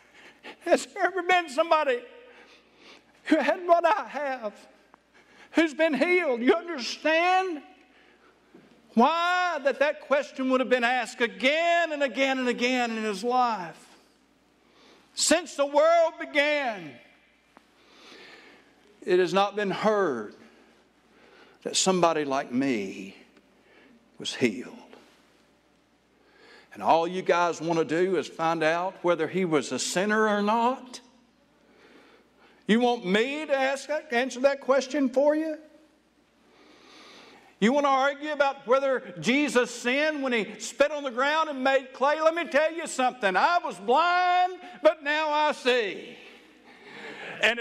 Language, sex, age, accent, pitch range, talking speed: English, male, 60-79, American, 235-325 Hz, 130 wpm